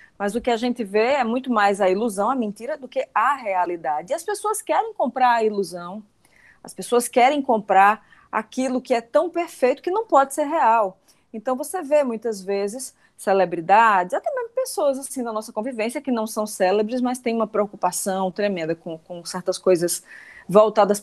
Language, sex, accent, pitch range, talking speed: Portuguese, female, Brazilian, 205-260 Hz, 185 wpm